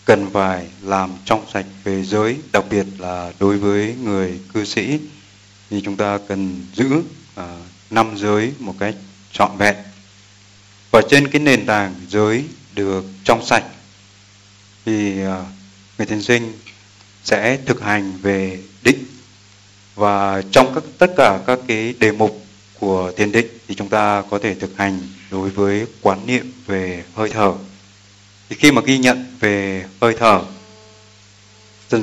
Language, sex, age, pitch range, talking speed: Vietnamese, male, 20-39, 100-115 Hz, 150 wpm